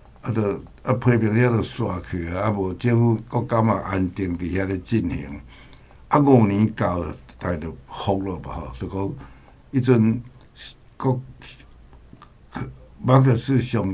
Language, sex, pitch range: Chinese, male, 90-115 Hz